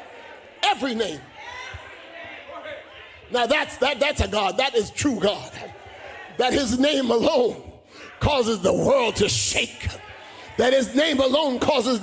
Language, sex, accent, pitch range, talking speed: English, male, American, 265-320 Hz, 130 wpm